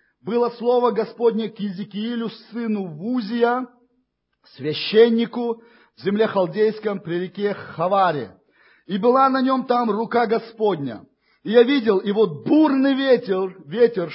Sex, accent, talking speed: male, native, 125 wpm